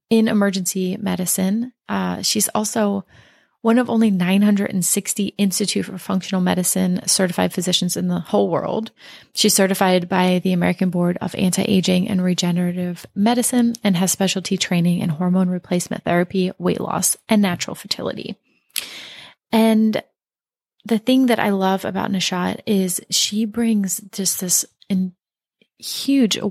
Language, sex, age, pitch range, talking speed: English, female, 30-49, 180-205 Hz, 135 wpm